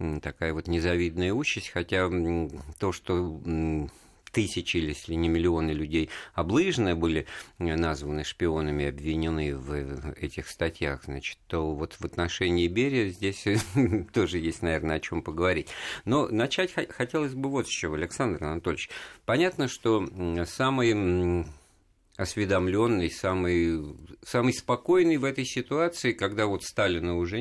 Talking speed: 125 wpm